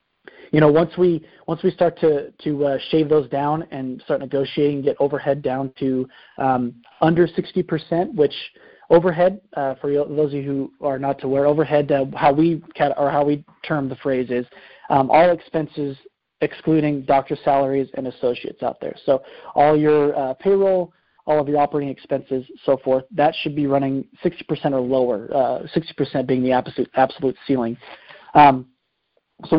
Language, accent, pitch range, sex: English, American, 135-160 Hz, male